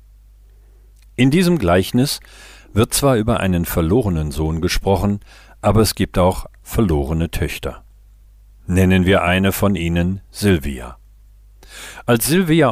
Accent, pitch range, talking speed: German, 85-100 Hz, 115 wpm